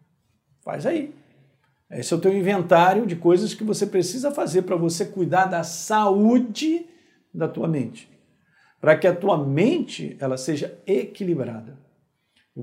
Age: 50-69